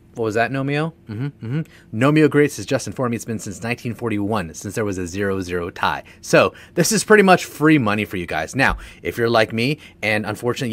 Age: 30-49